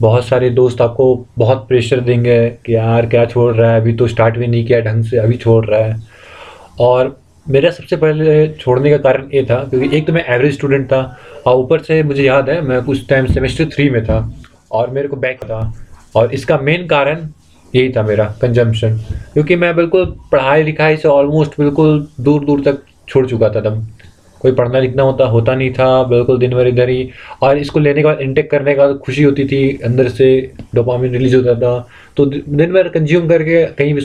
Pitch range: 115-140 Hz